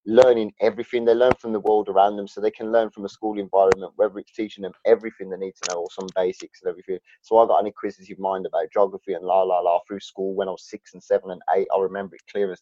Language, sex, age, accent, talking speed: English, male, 20-39, British, 275 wpm